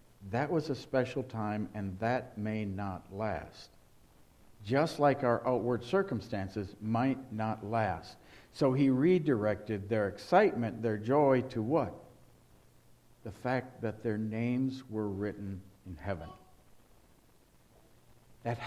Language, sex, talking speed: English, male, 120 wpm